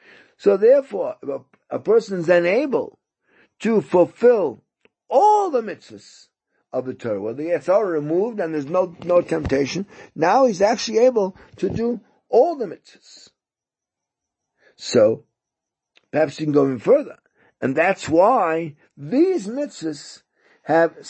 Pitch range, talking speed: 140-230 Hz, 130 wpm